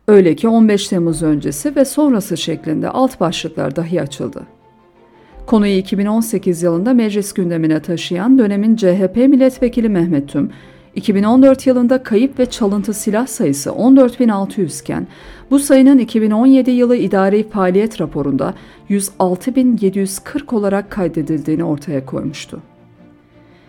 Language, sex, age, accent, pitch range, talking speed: Turkish, female, 50-69, native, 175-250 Hz, 110 wpm